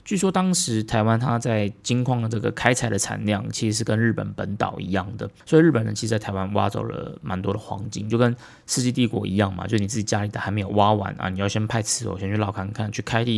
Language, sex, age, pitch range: Chinese, male, 20-39, 100-120 Hz